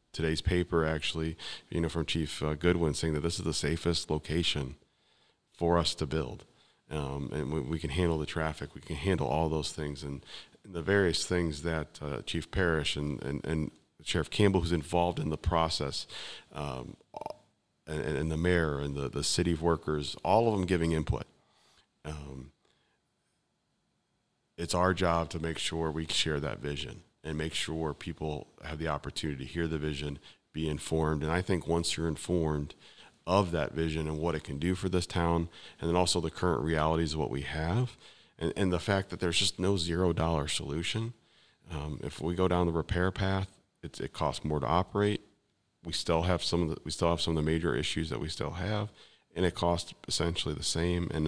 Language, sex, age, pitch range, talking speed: English, male, 40-59, 75-90 Hz, 195 wpm